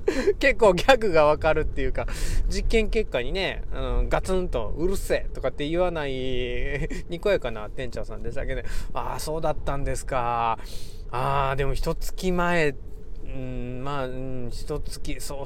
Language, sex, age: Japanese, male, 20-39